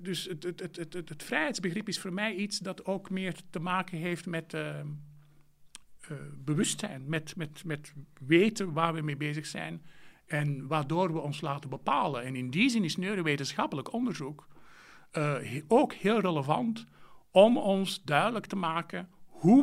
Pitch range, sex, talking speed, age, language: 150-195 Hz, male, 170 wpm, 50-69, English